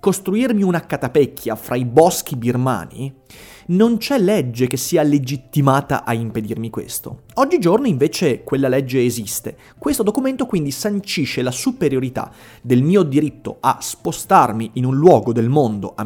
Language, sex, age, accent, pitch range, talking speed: Italian, male, 30-49, native, 125-185 Hz, 140 wpm